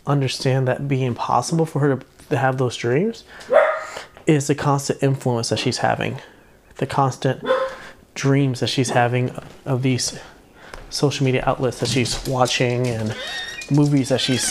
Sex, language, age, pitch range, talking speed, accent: male, English, 30-49, 125-145 Hz, 145 wpm, American